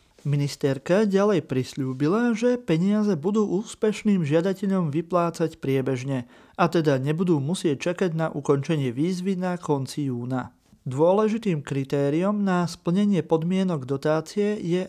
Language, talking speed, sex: Slovak, 115 wpm, male